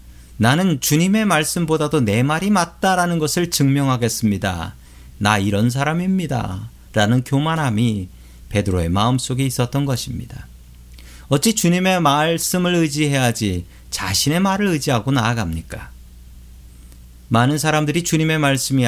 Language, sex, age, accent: Korean, male, 40-59, native